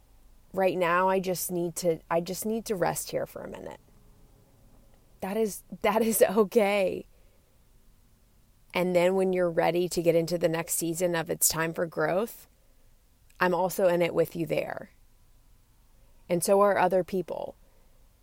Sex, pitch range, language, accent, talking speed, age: female, 155-185 Hz, English, American, 160 wpm, 30-49